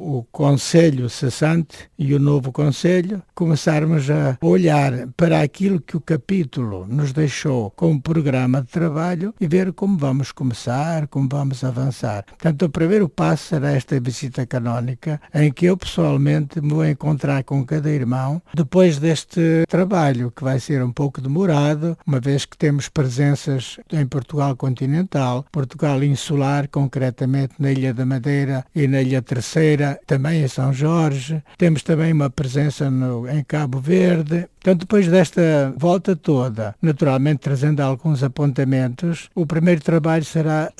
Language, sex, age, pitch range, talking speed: Portuguese, male, 60-79, 135-165 Hz, 145 wpm